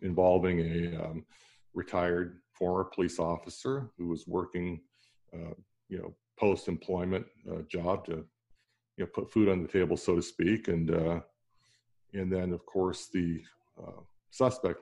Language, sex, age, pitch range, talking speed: English, male, 50-69, 85-95 Hz, 145 wpm